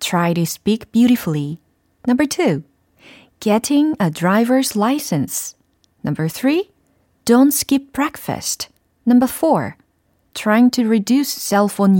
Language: Korean